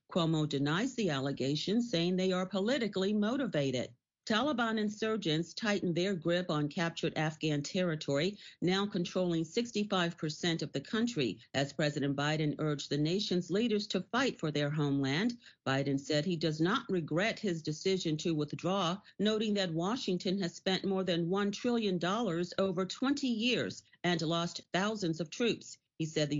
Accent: American